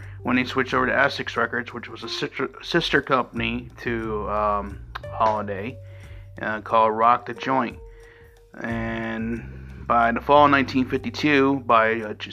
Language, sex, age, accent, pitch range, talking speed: English, male, 30-49, American, 105-125 Hz, 130 wpm